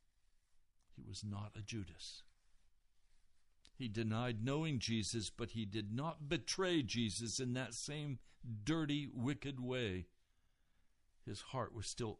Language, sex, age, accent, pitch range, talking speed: English, male, 60-79, American, 90-115 Hz, 125 wpm